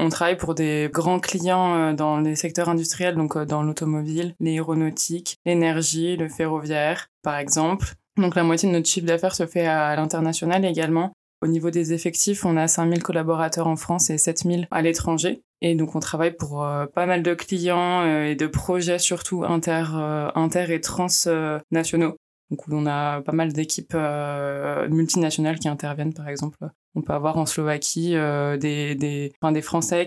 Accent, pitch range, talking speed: French, 155-175 Hz, 170 wpm